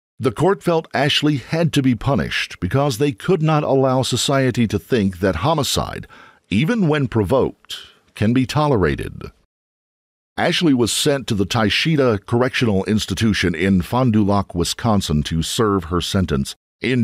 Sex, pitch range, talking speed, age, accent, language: male, 95-135 Hz, 150 wpm, 50-69, American, English